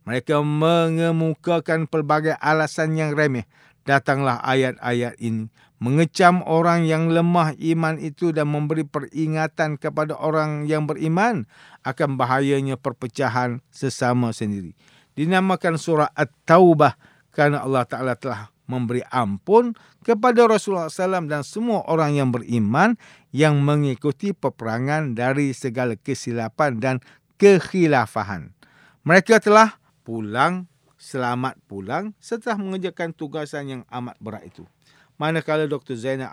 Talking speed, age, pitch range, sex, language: 110 wpm, 50-69, 130-165 Hz, male, English